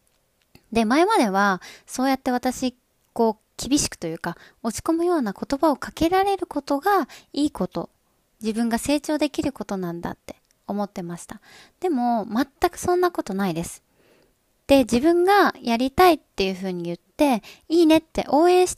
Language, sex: Japanese, female